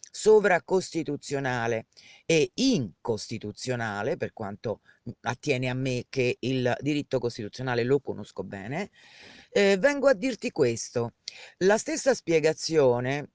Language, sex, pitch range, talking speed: Italian, female, 125-185 Hz, 105 wpm